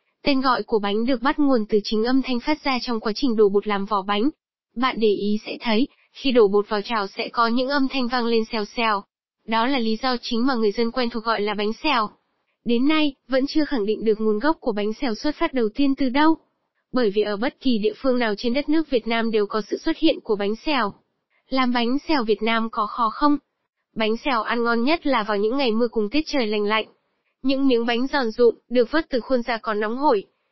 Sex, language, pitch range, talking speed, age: female, Vietnamese, 220-270 Hz, 255 wpm, 10-29